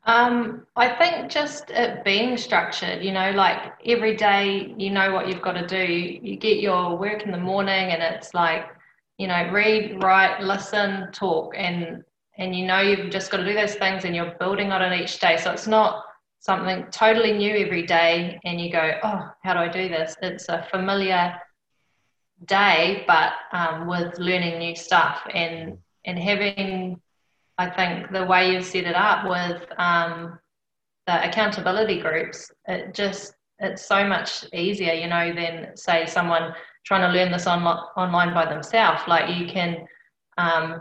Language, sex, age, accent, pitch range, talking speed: English, female, 20-39, Australian, 170-200 Hz, 175 wpm